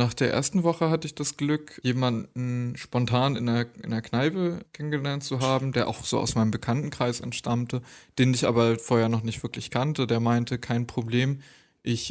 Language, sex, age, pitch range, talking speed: German, male, 20-39, 115-130 Hz, 185 wpm